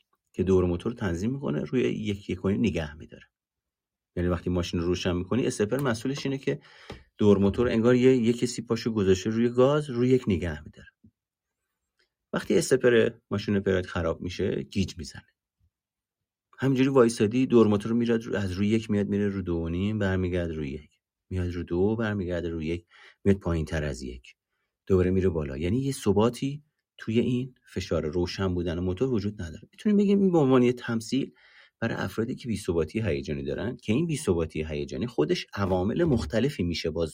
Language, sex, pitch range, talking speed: Persian, male, 90-120 Hz, 175 wpm